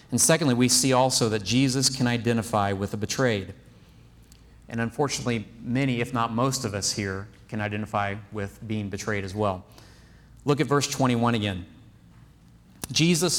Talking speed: 150 wpm